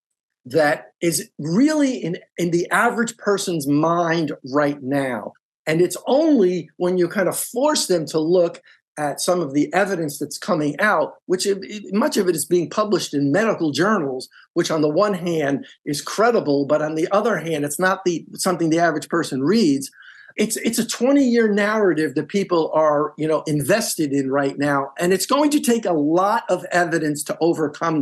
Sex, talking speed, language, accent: male, 185 wpm, English, American